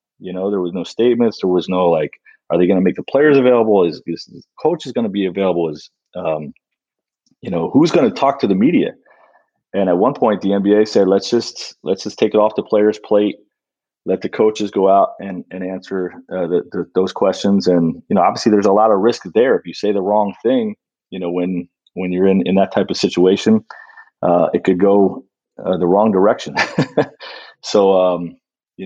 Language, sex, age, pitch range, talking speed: English, male, 30-49, 90-105 Hz, 220 wpm